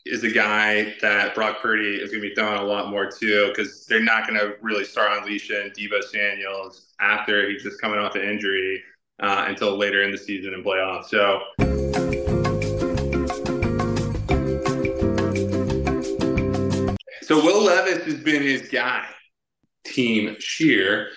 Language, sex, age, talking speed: English, male, 20-39, 145 wpm